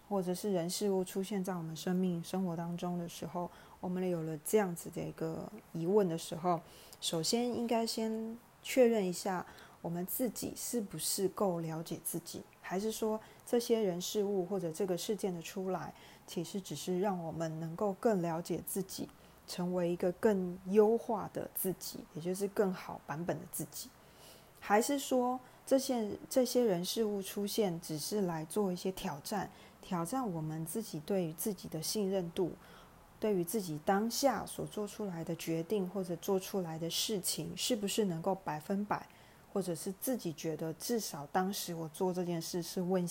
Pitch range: 170-205 Hz